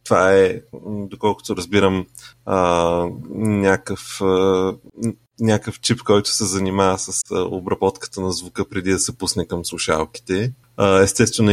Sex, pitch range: male, 95-120 Hz